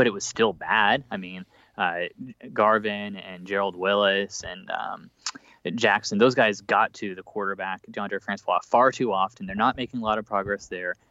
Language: English